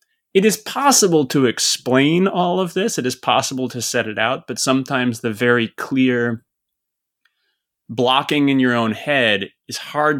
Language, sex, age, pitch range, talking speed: English, male, 20-39, 115-150 Hz, 160 wpm